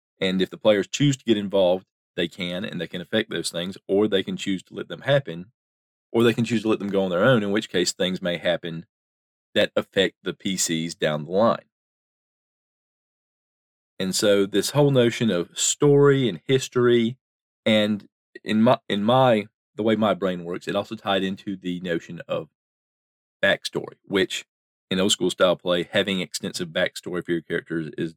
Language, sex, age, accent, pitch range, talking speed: English, male, 40-59, American, 85-115 Hz, 185 wpm